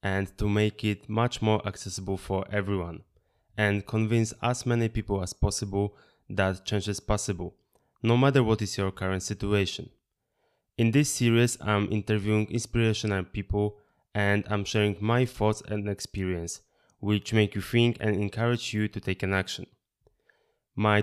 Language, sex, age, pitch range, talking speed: Polish, male, 20-39, 100-110 Hz, 150 wpm